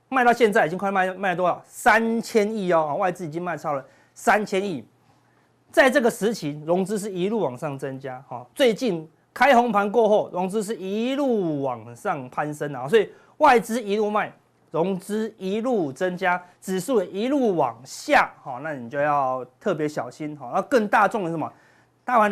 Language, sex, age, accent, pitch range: Chinese, male, 30-49, native, 150-210 Hz